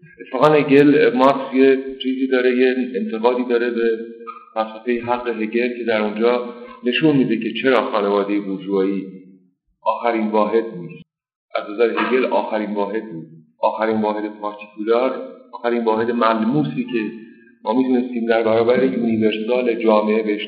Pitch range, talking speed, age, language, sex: 110-135 Hz, 130 wpm, 50-69, Persian, male